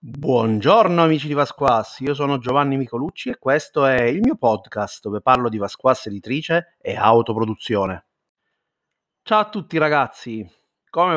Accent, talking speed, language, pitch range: native, 140 wpm, Italian, 125-160 Hz